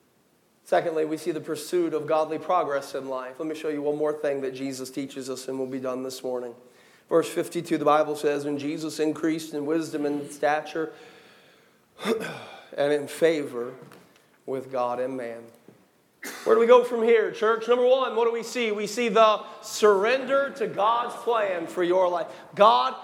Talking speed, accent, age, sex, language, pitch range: 180 wpm, American, 40-59, male, English, 145-230 Hz